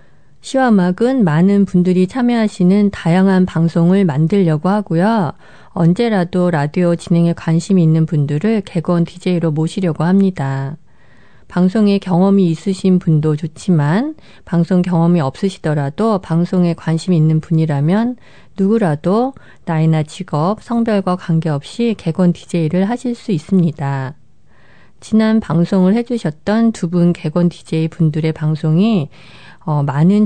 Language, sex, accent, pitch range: Korean, female, native, 160-195 Hz